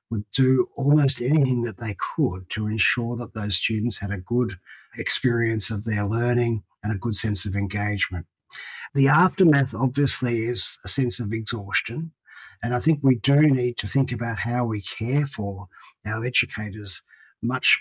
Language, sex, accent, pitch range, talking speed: English, male, Australian, 105-130 Hz, 165 wpm